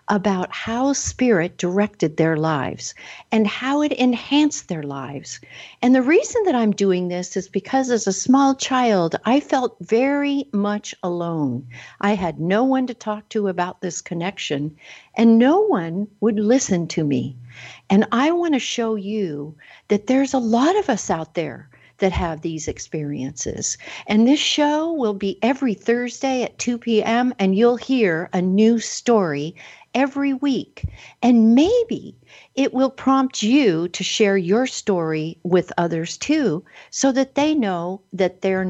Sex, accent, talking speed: female, American, 155 wpm